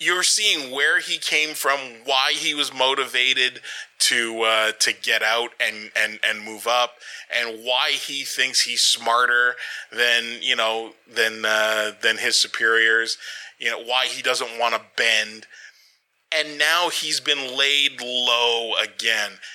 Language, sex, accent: English, male, American